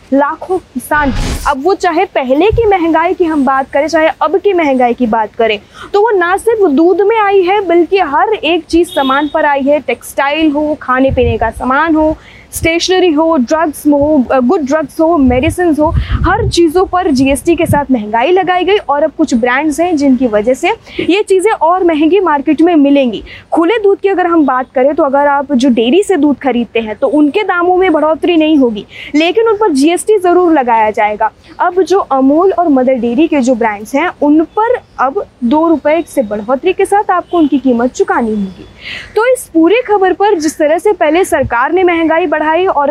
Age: 20-39